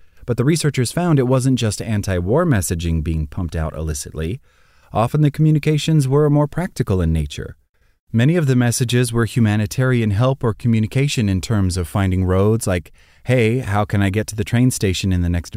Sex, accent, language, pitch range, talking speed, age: male, American, English, 90-120 Hz, 185 wpm, 30-49